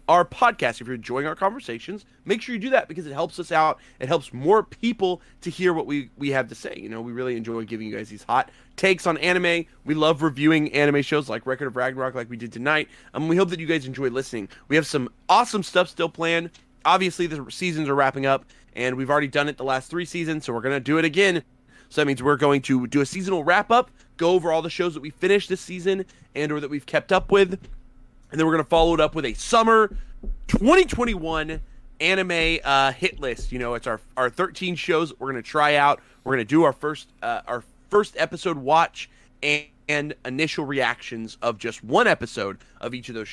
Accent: American